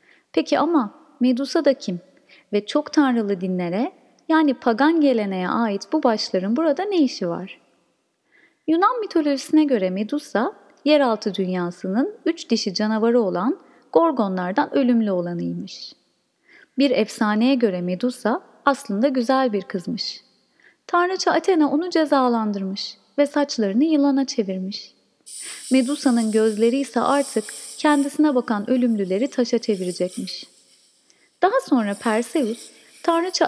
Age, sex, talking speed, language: 30-49, female, 110 wpm, Turkish